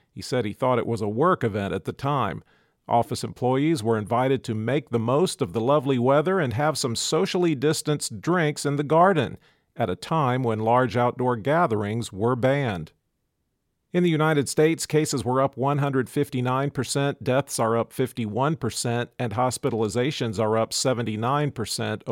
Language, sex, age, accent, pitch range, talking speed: English, male, 50-69, American, 115-140 Hz, 160 wpm